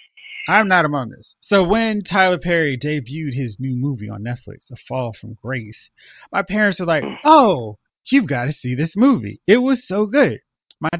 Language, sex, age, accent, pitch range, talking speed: English, male, 30-49, American, 125-195 Hz, 185 wpm